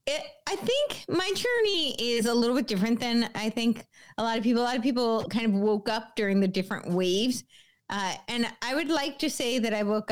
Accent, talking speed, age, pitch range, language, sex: American, 225 wpm, 30-49, 175-235 Hz, English, female